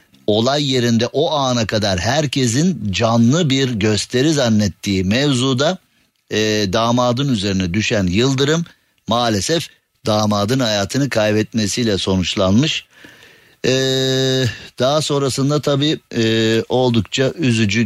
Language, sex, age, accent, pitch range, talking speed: Turkish, male, 50-69, native, 105-130 Hz, 95 wpm